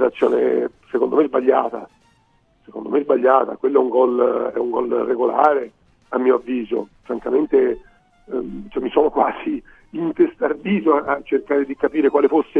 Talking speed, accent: 150 wpm, native